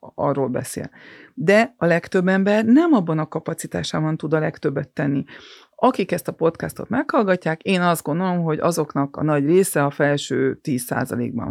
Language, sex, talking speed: Hungarian, female, 155 wpm